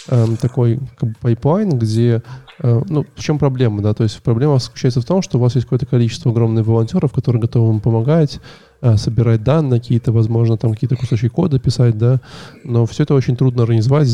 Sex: male